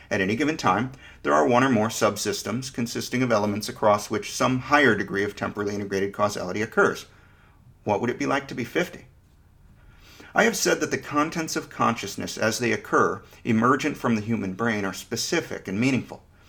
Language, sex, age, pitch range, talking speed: English, male, 40-59, 100-130 Hz, 185 wpm